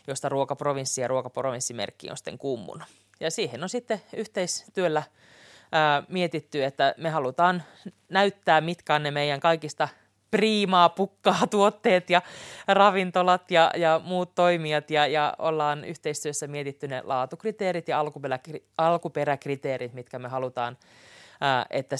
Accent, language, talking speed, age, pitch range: native, Finnish, 130 wpm, 30-49, 140-180 Hz